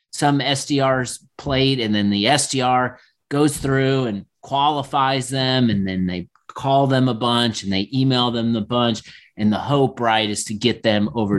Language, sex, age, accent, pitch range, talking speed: English, male, 30-49, American, 105-135 Hz, 180 wpm